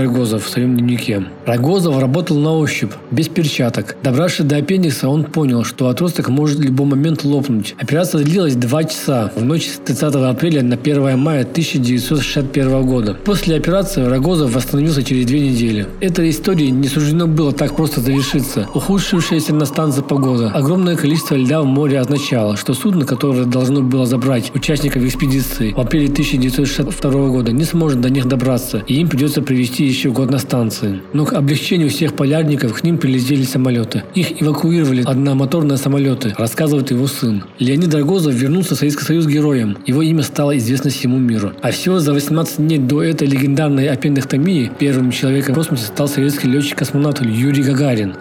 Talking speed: 165 wpm